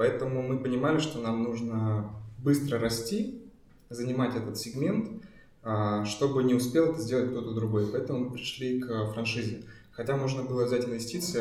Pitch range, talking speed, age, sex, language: 115-135 Hz, 145 wpm, 20-39, male, Russian